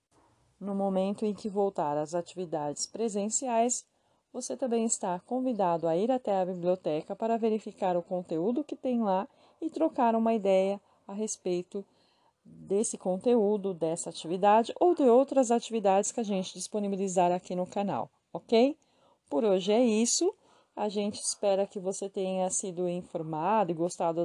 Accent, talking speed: Brazilian, 150 wpm